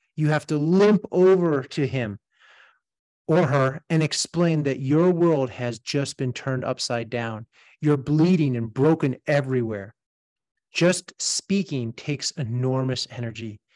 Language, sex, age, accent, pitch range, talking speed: English, male, 30-49, American, 125-170 Hz, 130 wpm